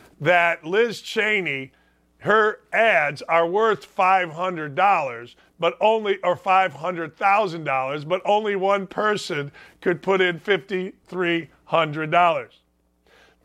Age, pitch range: 40-59, 120-195 Hz